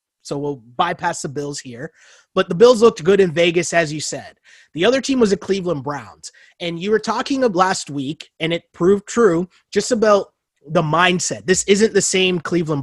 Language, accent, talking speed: English, American, 200 wpm